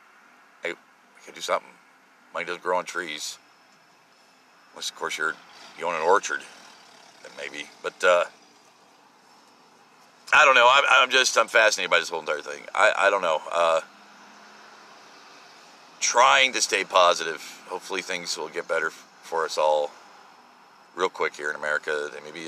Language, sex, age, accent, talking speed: English, male, 50-69, American, 150 wpm